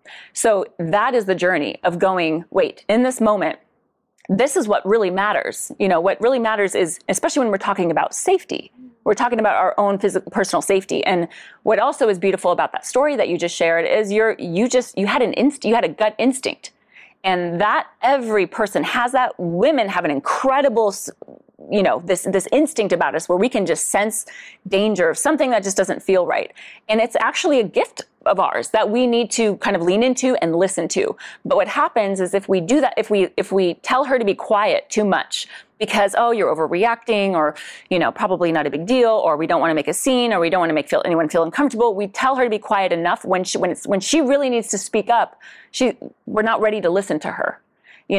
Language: English